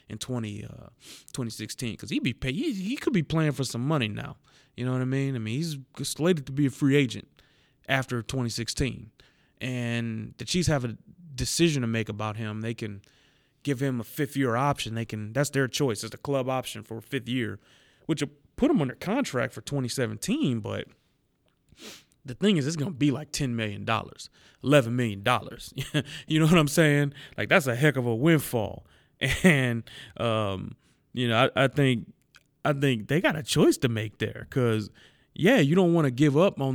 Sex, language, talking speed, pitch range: male, English, 200 wpm, 115-145 Hz